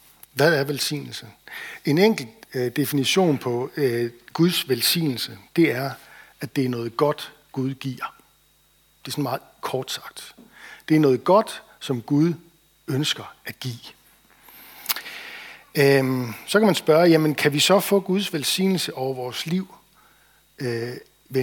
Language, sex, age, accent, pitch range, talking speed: Danish, male, 60-79, native, 130-170 Hz, 135 wpm